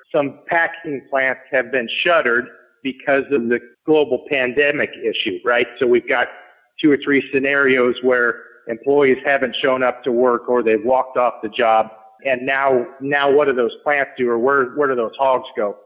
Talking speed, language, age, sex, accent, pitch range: 180 wpm, English, 50-69, male, American, 120-145 Hz